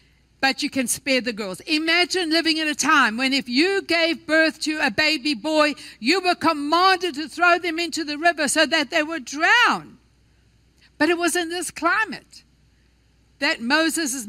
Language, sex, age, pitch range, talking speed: English, female, 60-79, 260-350 Hz, 175 wpm